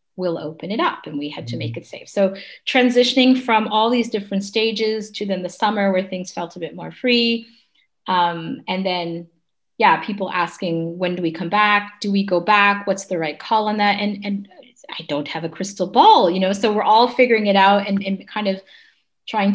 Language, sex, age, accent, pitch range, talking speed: English, female, 30-49, American, 170-215 Hz, 220 wpm